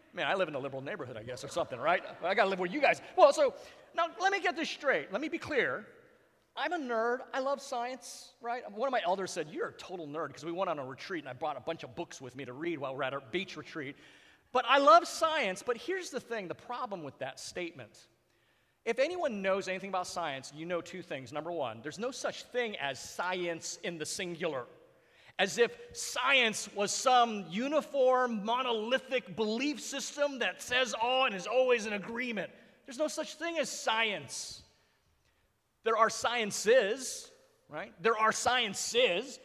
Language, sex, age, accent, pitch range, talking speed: English, male, 40-59, American, 190-275 Hz, 200 wpm